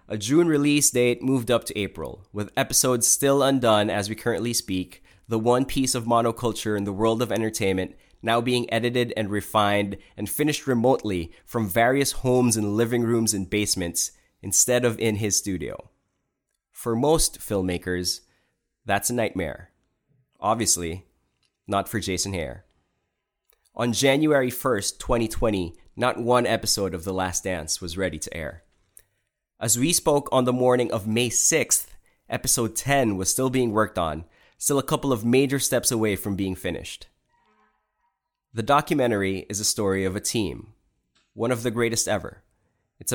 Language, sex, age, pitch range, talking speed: English, male, 20-39, 100-125 Hz, 155 wpm